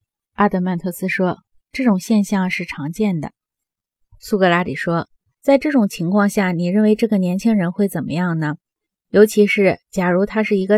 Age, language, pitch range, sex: 20-39, Chinese, 175-220 Hz, female